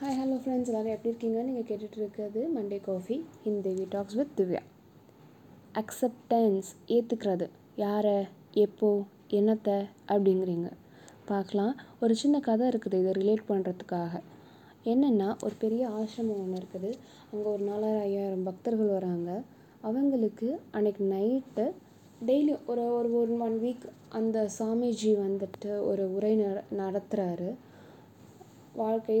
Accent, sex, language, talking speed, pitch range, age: native, female, Tamil, 115 wpm, 195-235 Hz, 20-39